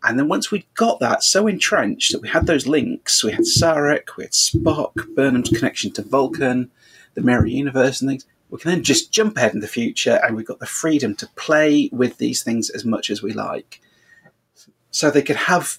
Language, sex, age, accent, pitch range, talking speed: English, male, 30-49, British, 120-165 Hz, 215 wpm